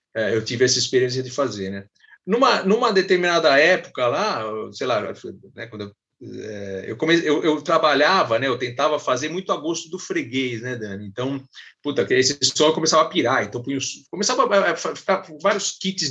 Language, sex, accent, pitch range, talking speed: Portuguese, male, Brazilian, 130-195 Hz, 195 wpm